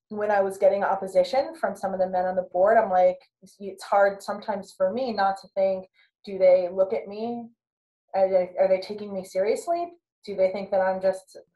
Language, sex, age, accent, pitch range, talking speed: English, female, 20-39, American, 185-225 Hz, 210 wpm